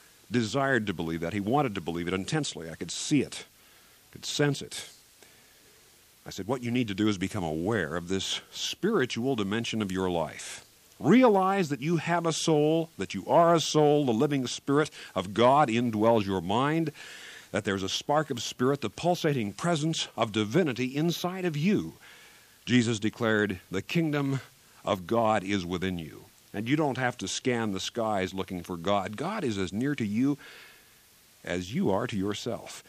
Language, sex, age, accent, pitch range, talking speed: English, male, 50-69, American, 100-140 Hz, 180 wpm